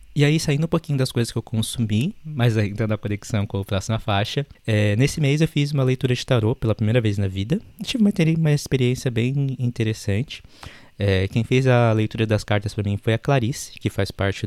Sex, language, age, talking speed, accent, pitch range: male, Portuguese, 20-39, 210 wpm, Brazilian, 100-125 Hz